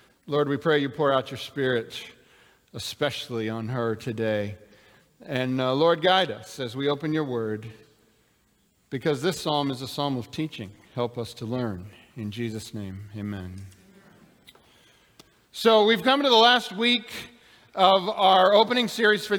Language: English